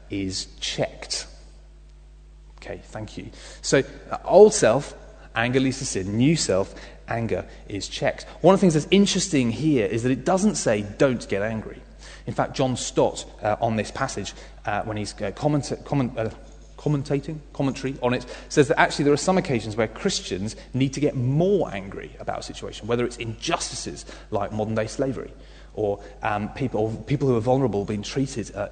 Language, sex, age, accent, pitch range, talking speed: English, male, 30-49, British, 110-145 Hz, 180 wpm